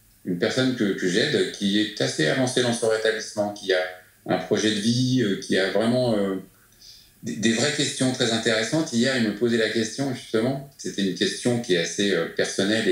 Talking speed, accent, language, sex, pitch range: 200 wpm, French, French, male, 100-125 Hz